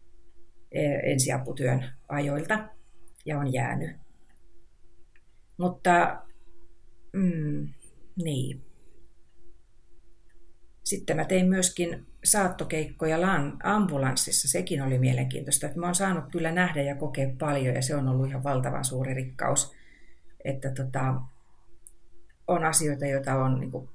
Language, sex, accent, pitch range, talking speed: Finnish, female, native, 125-160 Hz, 105 wpm